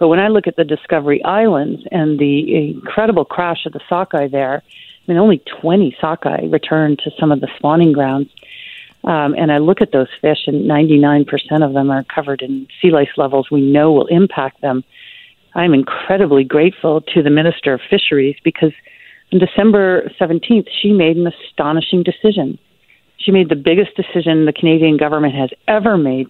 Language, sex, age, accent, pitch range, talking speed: English, female, 40-59, American, 145-180 Hz, 180 wpm